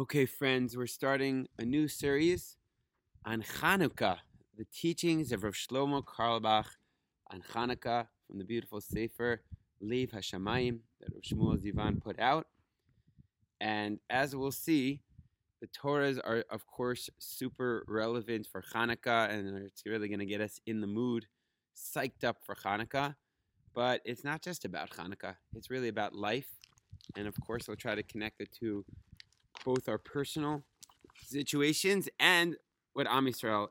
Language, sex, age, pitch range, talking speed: English, male, 30-49, 100-130 Hz, 145 wpm